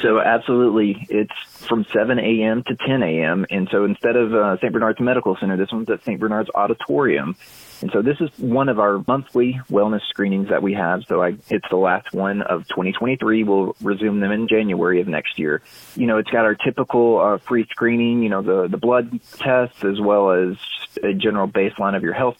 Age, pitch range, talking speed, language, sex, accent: 30-49, 100-120 Hz, 205 wpm, English, male, American